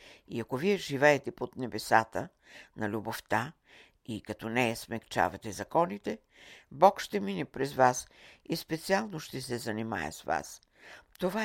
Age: 60-79